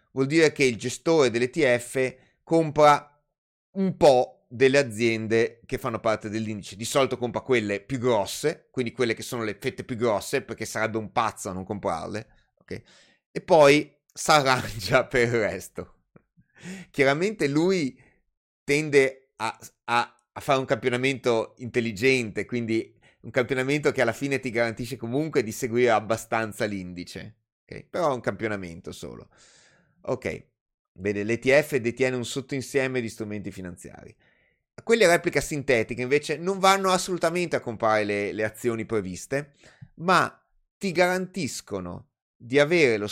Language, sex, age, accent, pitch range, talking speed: Italian, male, 30-49, native, 110-145 Hz, 135 wpm